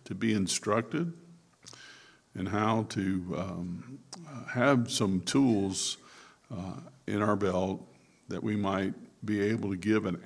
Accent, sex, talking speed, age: American, male, 130 wpm, 60-79